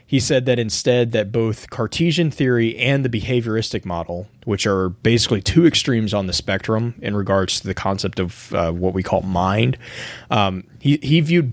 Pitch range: 100-125 Hz